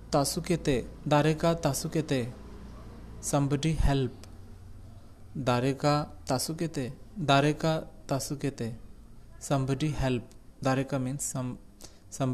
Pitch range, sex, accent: 105-140 Hz, male, Indian